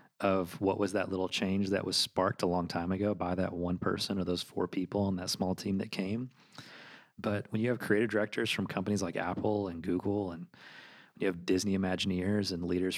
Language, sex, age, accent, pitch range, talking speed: English, male, 30-49, American, 90-100 Hz, 215 wpm